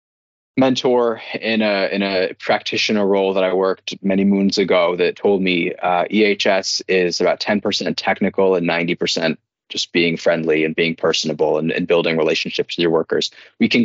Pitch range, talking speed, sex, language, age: 85-100 Hz, 170 wpm, male, English, 20-39